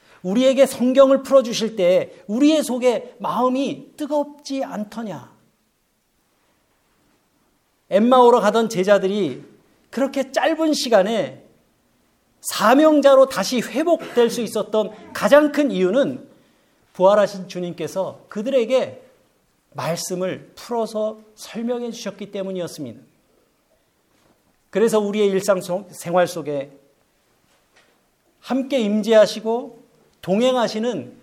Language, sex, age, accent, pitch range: Korean, male, 40-59, native, 210-275 Hz